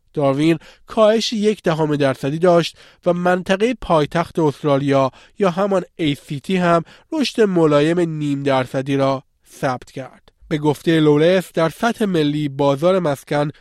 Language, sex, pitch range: Persian, male, 140-180 Hz